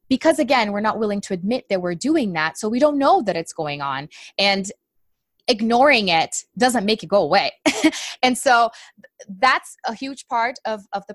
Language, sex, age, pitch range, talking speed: English, female, 20-39, 185-235 Hz, 195 wpm